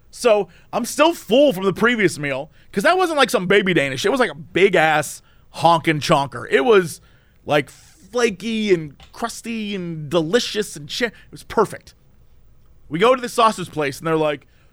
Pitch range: 150-210 Hz